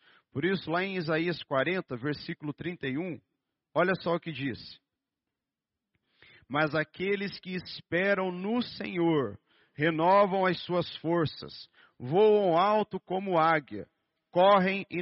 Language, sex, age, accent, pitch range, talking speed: Portuguese, male, 40-59, Brazilian, 140-170 Hz, 115 wpm